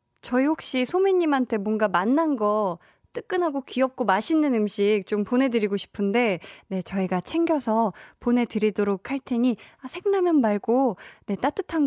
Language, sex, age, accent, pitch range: Korean, female, 20-39, native, 195-280 Hz